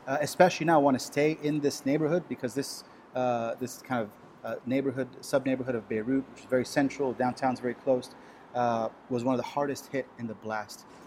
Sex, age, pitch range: male, 30-49, 125-150 Hz